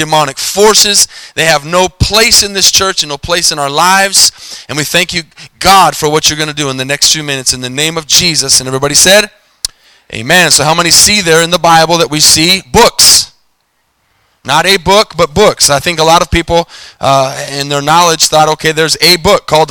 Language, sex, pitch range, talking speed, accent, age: English, male, 150-190 Hz, 220 wpm, American, 20-39